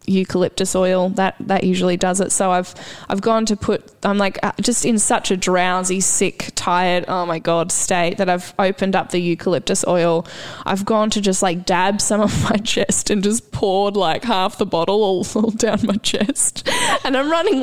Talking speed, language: 200 wpm, English